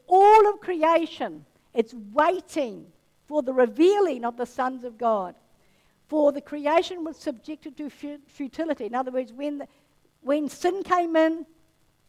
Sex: female